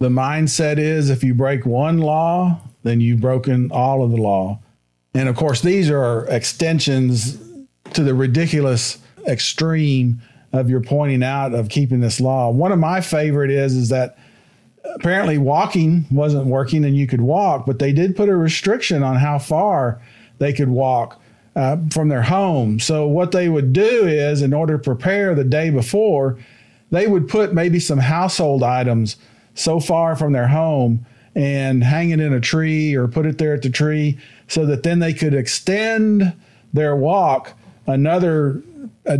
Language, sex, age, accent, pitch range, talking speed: English, male, 50-69, American, 130-165 Hz, 170 wpm